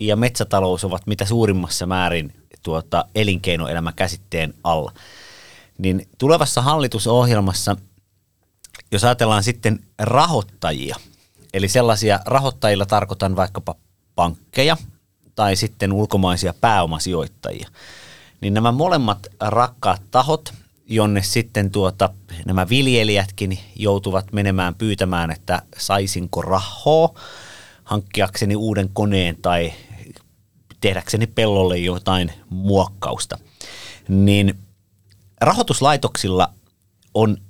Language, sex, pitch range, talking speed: Finnish, male, 95-110 Hz, 80 wpm